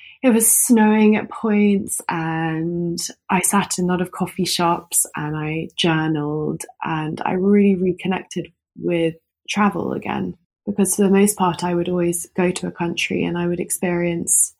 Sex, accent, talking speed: female, British, 165 wpm